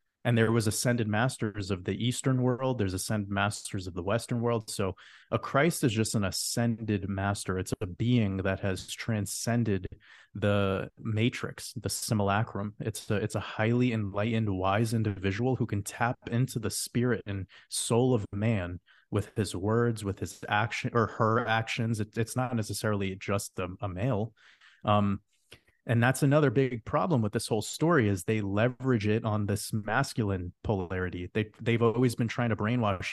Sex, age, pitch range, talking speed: male, 30-49, 100-120 Hz, 170 wpm